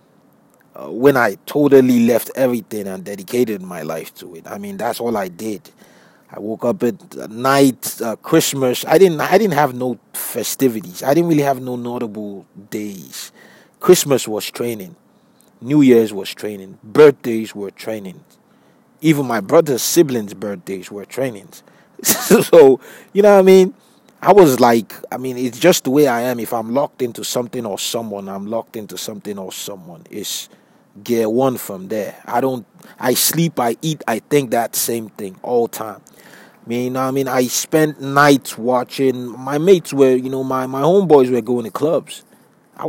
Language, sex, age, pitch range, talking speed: English, male, 30-49, 110-145 Hz, 175 wpm